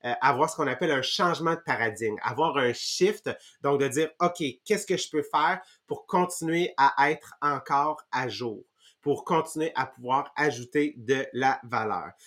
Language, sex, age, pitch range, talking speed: English, male, 30-49, 145-190 Hz, 170 wpm